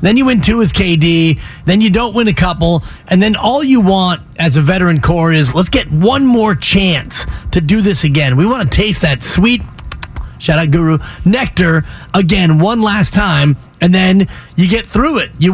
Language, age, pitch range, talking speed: English, 30-49, 160-195 Hz, 200 wpm